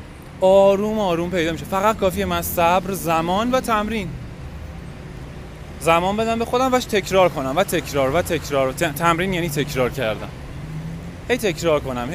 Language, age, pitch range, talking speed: Persian, 20-39, 145-190 Hz, 155 wpm